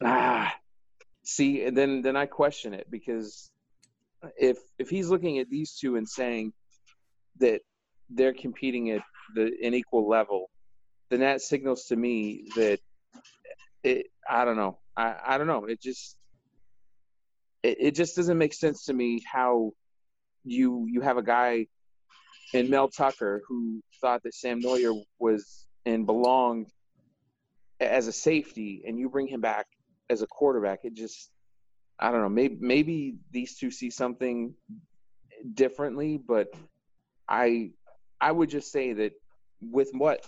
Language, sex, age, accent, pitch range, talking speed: English, male, 30-49, American, 105-135 Hz, 145 wpm